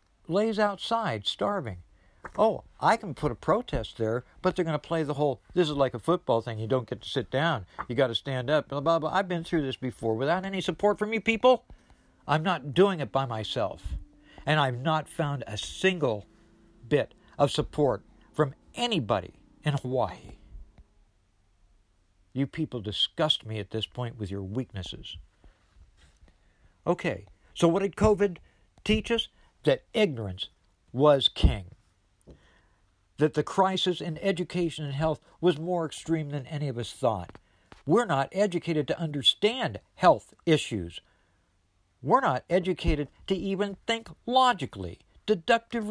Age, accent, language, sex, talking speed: 60-79, American, English, male, 155 wpm